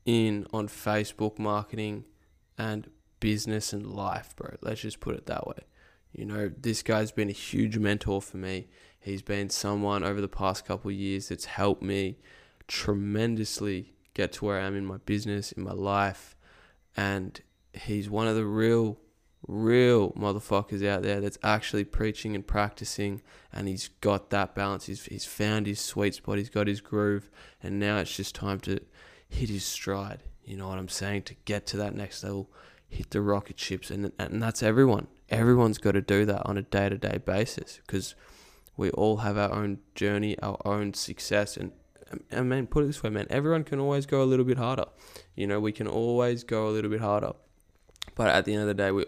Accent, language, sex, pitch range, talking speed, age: Australian, English, male, 100-110 Hz, 195 wpm, 10-29